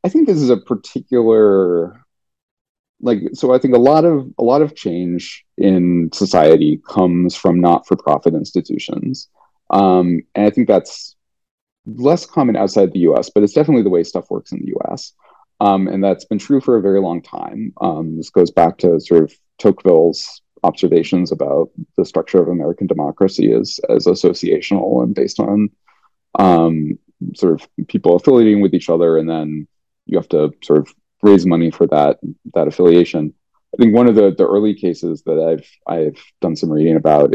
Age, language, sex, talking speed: 30-49, English, male, 175 wpm